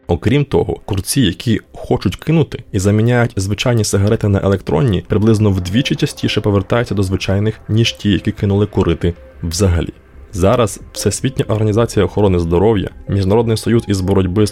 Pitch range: 95-115 Hz